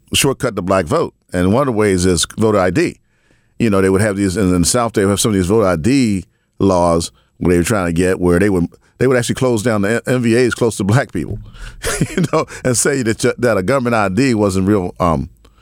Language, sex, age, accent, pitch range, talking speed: English, male, 40-59, American, 95-125 Hz, 240 wpm